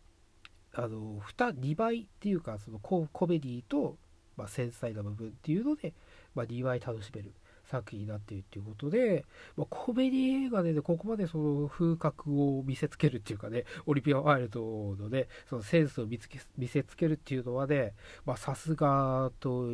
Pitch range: 105-150 Hz